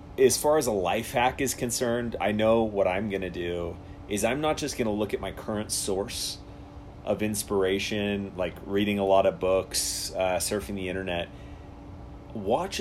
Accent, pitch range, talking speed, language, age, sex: American, 95-110 Hz, 175 wpm, English, 30-49, male